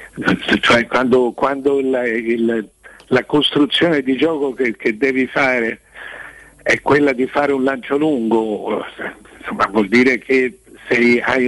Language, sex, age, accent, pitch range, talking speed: Italian, male, 60-79, native, 110-135 Hz, 135 wpm